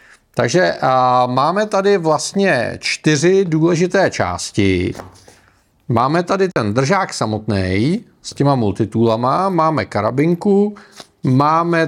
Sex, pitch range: male, 115-165 Hz